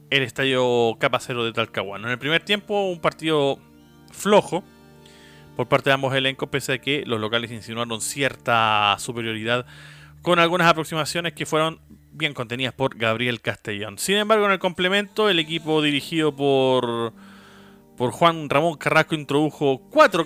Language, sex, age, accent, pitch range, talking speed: Spanish, male, 30-49, Argentinian, 120-165 Hz, 150 wpm